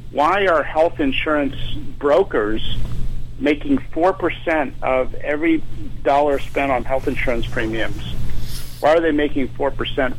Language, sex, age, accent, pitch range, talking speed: English, male, 50-69, American, 120-145 Hz, 120 wpm